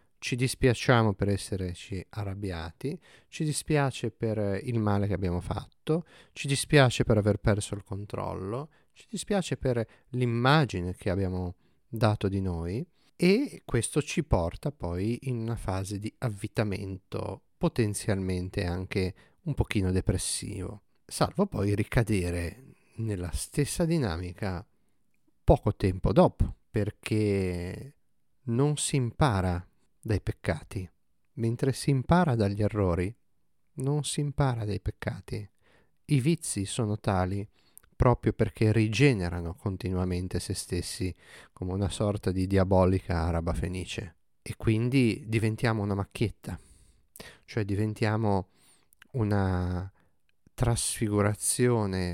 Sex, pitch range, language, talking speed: male, 95-120 Hz, Italian, 110 wpm